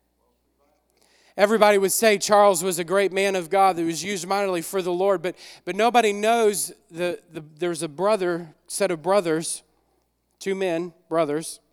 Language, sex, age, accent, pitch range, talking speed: English, male, 40-59, American, 155-190 Hz, 165 wpm